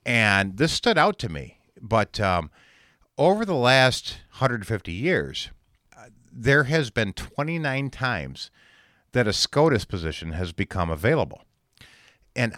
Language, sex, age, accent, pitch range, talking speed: English, male, 50-69, American, 90-130 Hz, 125 wpm